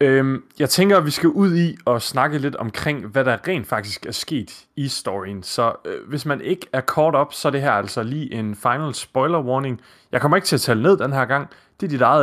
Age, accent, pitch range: 30-49, native, 110-150 Hz